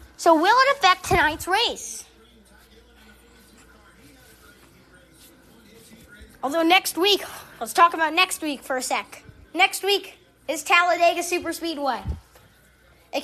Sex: female